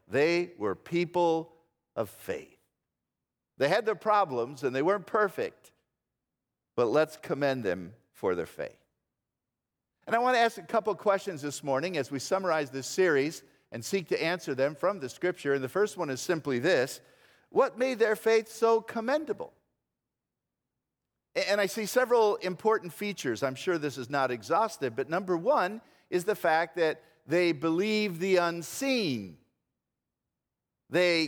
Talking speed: 155 wpm